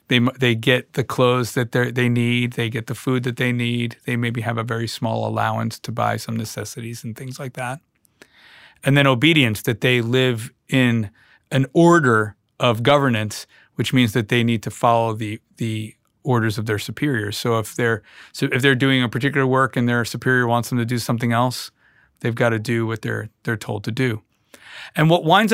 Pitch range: 115-135 Hz